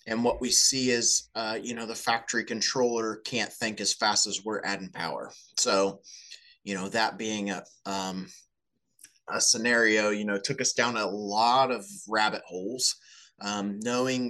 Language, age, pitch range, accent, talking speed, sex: English, 20-39, 100-120 Hz, American, 170 wpm, male